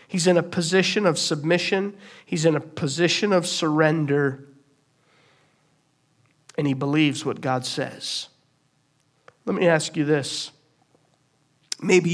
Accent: American